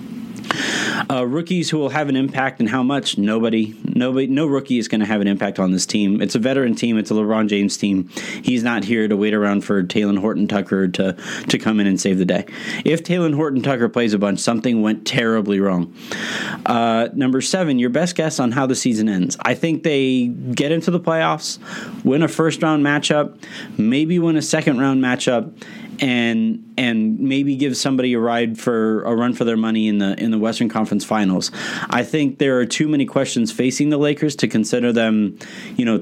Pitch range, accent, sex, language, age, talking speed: 110-145 Hz, American, male, English, 20-39, 205 wpm